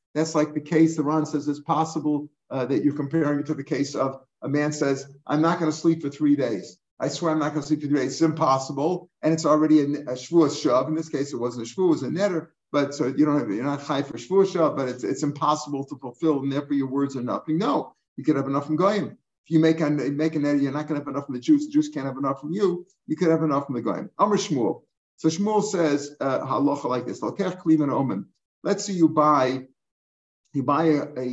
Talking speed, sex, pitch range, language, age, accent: 250 wpm, male, 140-160 Hz, English, 50-69, American